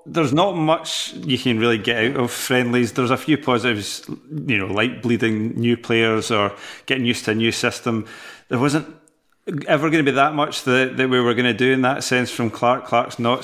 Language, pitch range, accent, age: English, 115-140 Hz, British, 30-49